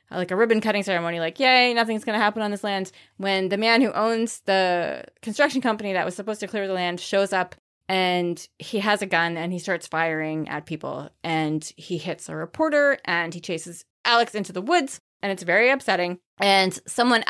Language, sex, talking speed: English, female, 210 wpm